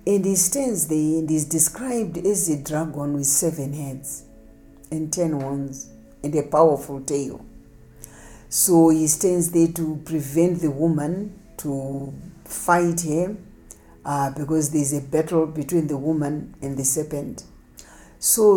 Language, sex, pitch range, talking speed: English, female, 145-175 Hz, 140 wpm